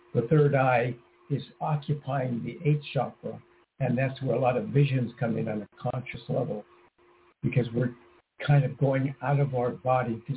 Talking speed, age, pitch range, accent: 180 wpm, 60-79, 130-150 Hz, American